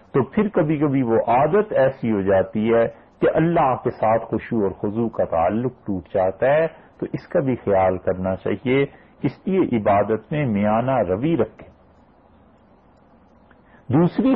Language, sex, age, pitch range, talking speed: English, male, 50-69, 100-135 Hz, 160 wpm